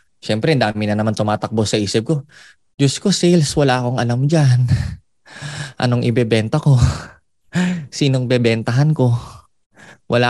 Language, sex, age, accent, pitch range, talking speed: Filipino, male, 20-39, native, 115-160 Hz, 130 wpm